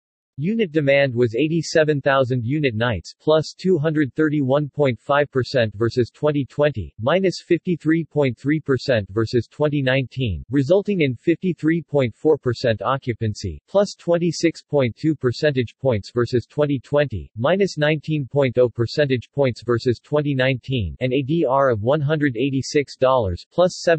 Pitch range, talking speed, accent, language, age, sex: 120-150 Hz, 90 wpm, American, English, 40-59, male